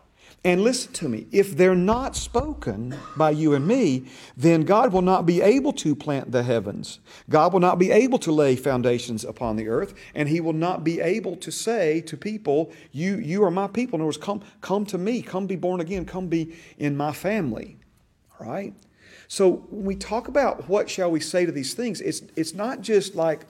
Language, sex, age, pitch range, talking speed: English, male, 40-59, 140-195 Hz, 210 wpm